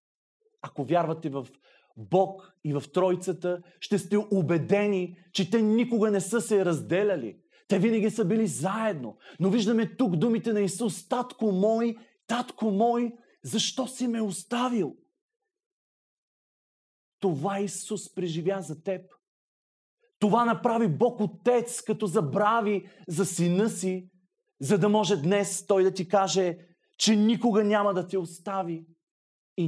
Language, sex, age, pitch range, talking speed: Bulgarian, male, 30-49, 160-210 Hz, 130 wpm